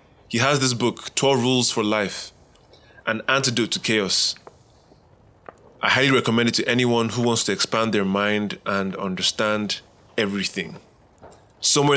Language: English